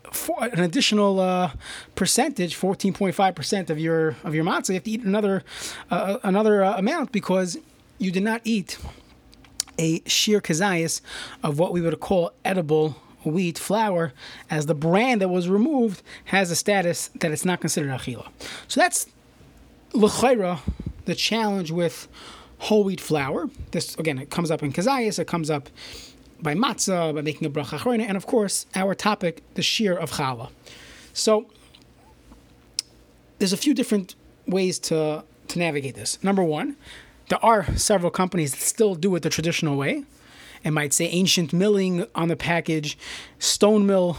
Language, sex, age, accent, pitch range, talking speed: English, male, 20-39, American, 160-205 Hz, 160 wpm